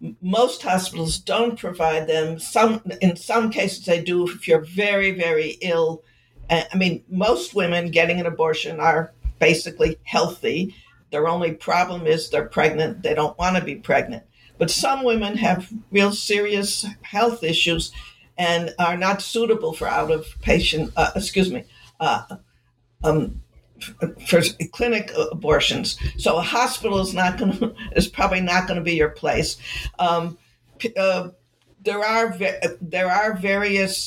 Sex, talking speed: female, 145 wpm